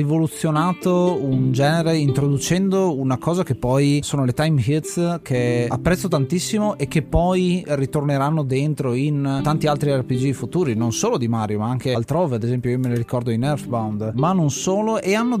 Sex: male